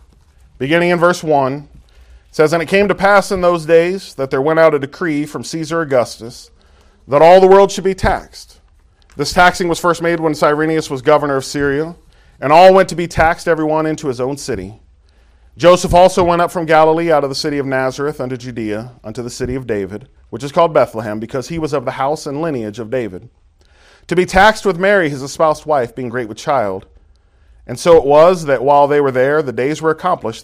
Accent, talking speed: American, 215 wpm